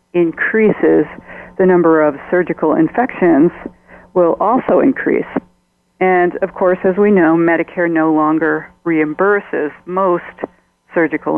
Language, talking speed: English, 110 wpm